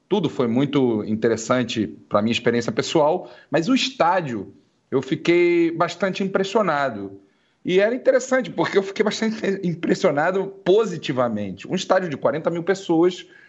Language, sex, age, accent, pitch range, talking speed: Portuguese, male, 40-59, Brazilian, 130-195 Hz, 135 wpm